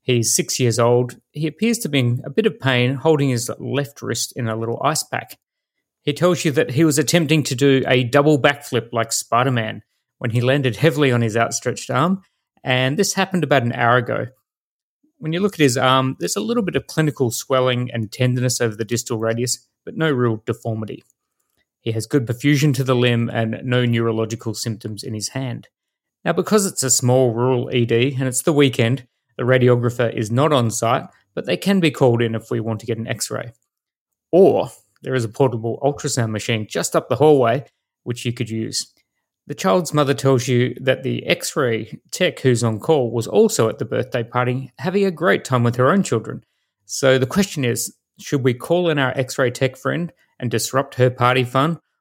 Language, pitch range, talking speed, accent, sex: English, 120-145 Hz, 205 wpm, Australian, male